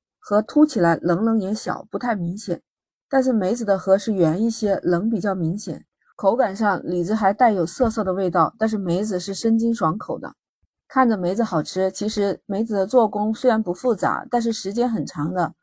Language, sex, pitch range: Chinese, female, 185-235 Hz